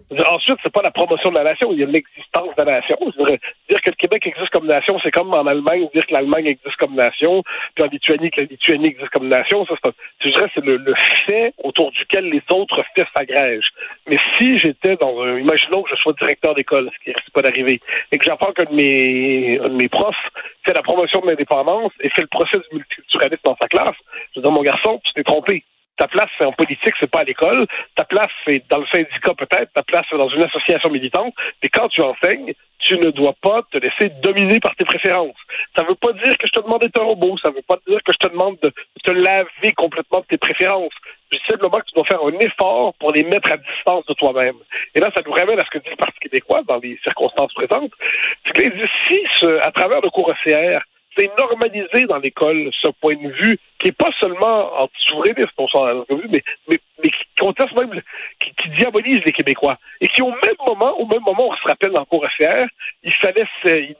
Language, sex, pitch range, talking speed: French, male, 155-225 Hz, 235 wpm